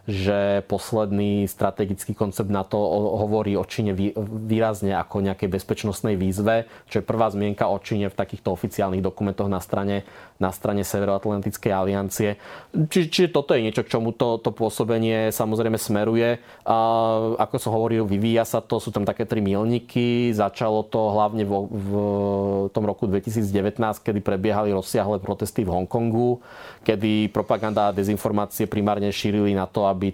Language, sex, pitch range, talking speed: Slovak, male, 100-110 Hz, 155 wpm